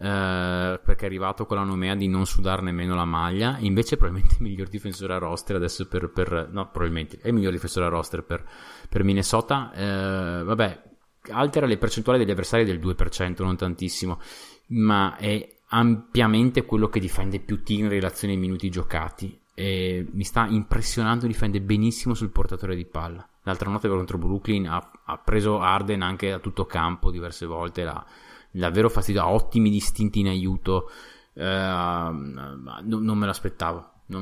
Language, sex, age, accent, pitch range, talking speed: Italian, male, 20-39, native, 90-105 Hz, 170 wpm